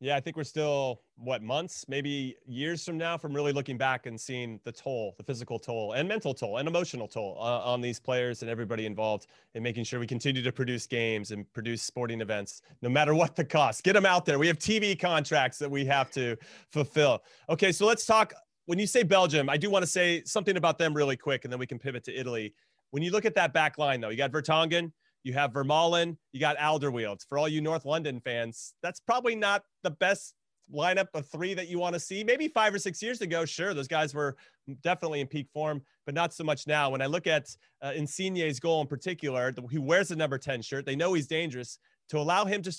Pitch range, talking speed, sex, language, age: 130-165 Hz, 235 wpm, male, English, 30-49